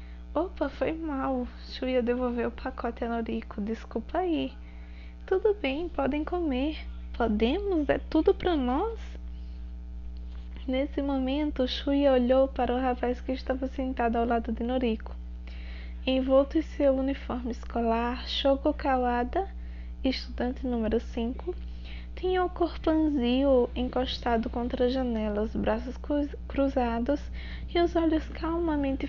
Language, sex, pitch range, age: Portuguese, female, 215-265 Hz, 10-29